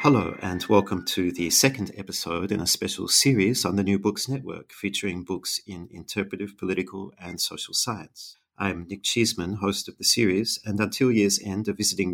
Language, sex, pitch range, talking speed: English, male, 90-105 Hz, 185 wpm